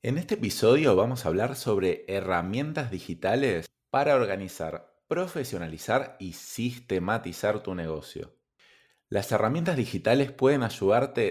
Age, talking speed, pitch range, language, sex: 20-39, 110 wpm, 90-125 Hz, Spanish, male